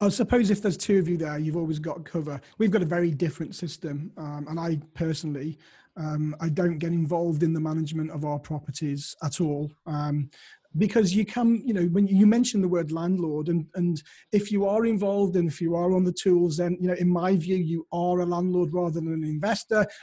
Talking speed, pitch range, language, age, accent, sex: 220 wpm, 165-195 Hz, English, 30-49, British, male